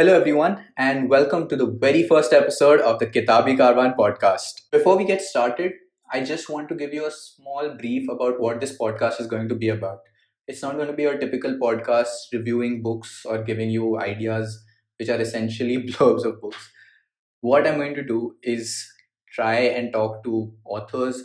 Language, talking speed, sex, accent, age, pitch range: English, 190 wpm, male, Indian, 20-39, 110-125 Hz